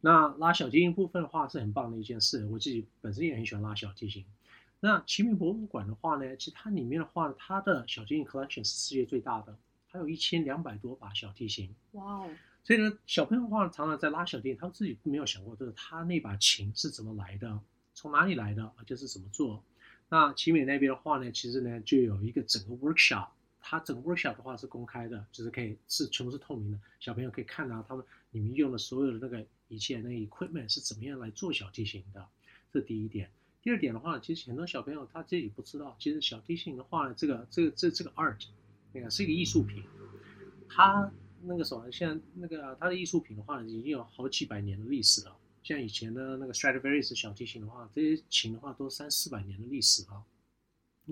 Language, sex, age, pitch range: Chinese, male, 30-49, 110-160 Hz